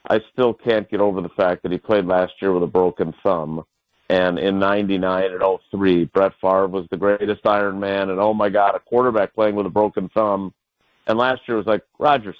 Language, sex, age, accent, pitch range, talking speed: English, male, 50-69, American, 100-125 Hz, 225 wpm